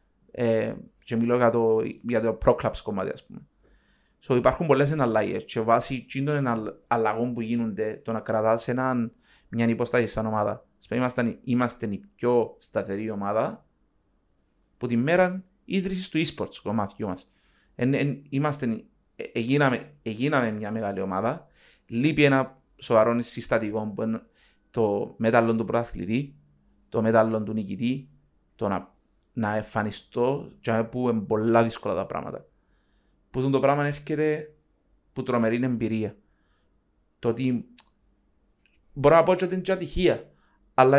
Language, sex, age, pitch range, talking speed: Greek, male, 30-49, 110-135 Hz, 110 wpm